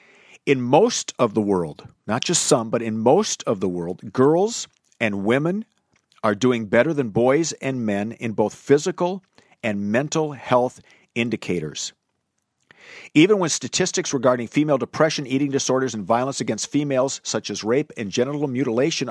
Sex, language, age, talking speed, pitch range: male, English, 50-69, 155 wpm, 110-150 Hz